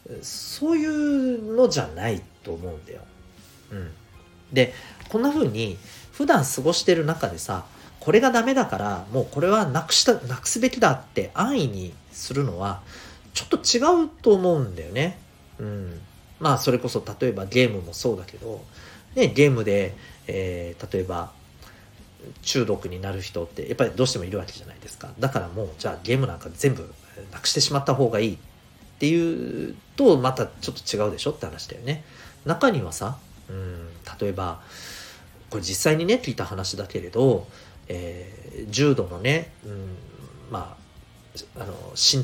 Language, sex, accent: Japanese, male, native